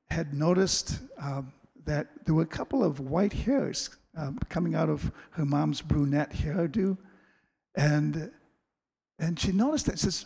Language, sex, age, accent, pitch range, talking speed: English, male, 60-79, American, 150-215 Hz, 150 wpm